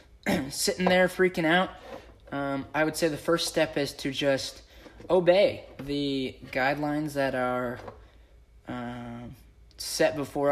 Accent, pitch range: American, 125-150 Hz